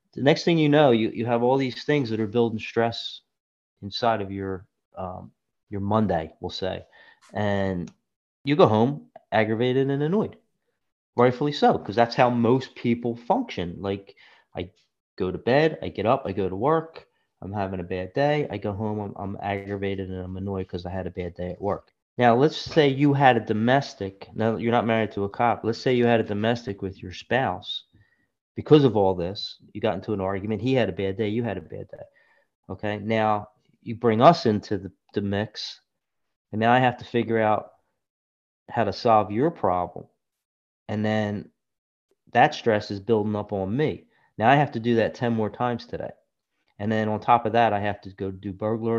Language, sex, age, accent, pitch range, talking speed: English, male, 30-49, American, 100-120 Hz, 200 wpm